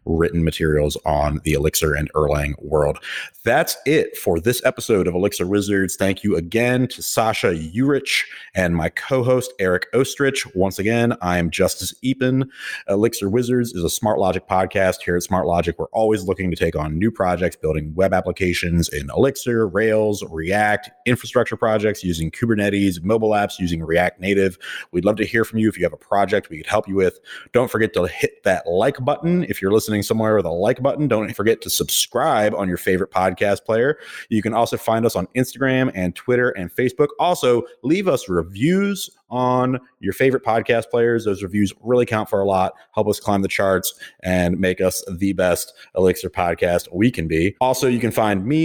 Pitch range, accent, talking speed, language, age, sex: 90-120 Hz, American, 190 wpm, English, 30-49, male